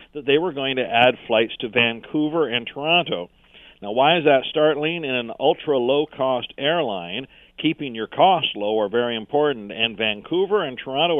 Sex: male